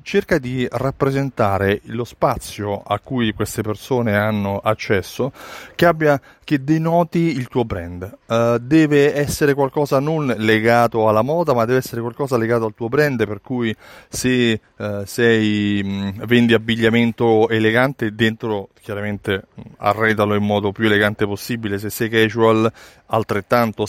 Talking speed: 140 wpm